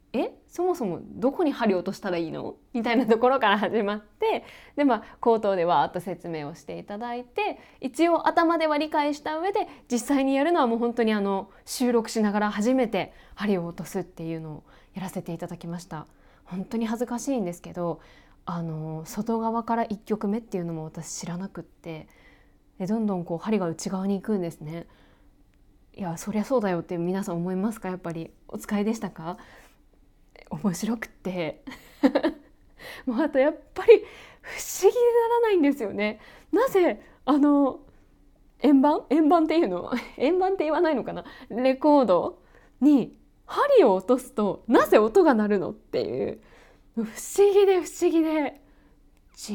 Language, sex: Japanese, female